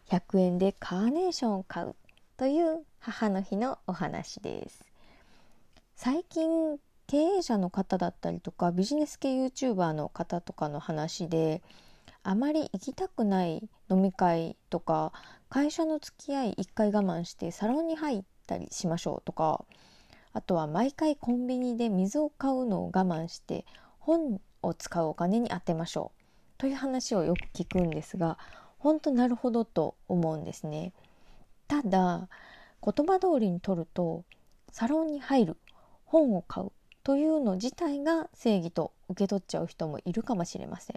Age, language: 20-39, Japanese